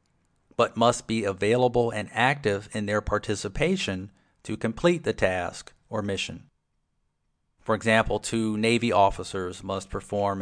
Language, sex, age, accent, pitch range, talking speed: English, male, 40-59, American, 95-125 Hz, 125 wpm